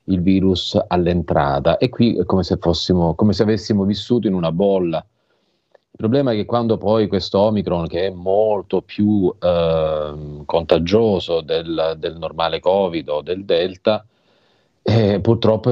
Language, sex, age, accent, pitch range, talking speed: Italian, male, 40-59, native, 90-110 Hz, 150 wpm